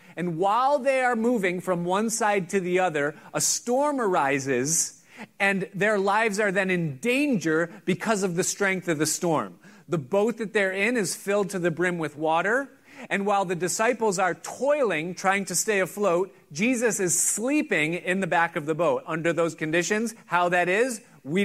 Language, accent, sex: English, American, male